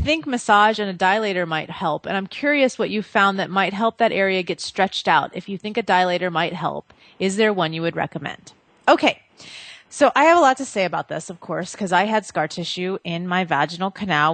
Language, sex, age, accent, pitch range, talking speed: English, female, 30-49, American, 170-205 Hz, 230 wpm